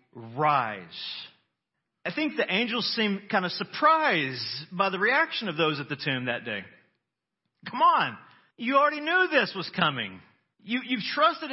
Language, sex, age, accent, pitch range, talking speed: English, male, 40-59, American, 170-255 Hz, 155 wpm